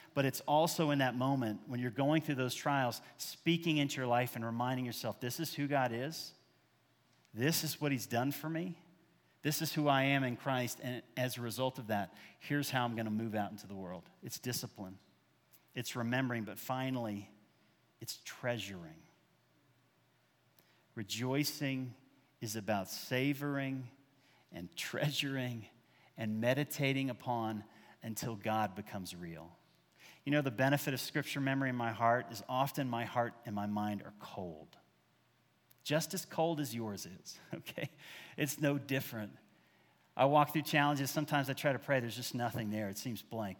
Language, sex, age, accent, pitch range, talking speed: English, male, 40-59, American, 115-145 Hz, 165 wpm